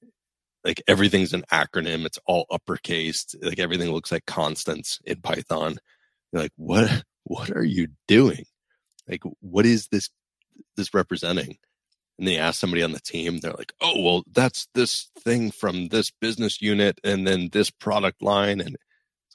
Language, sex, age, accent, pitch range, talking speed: English, male, 30-49, American, 80-105 Hz, 160 wpm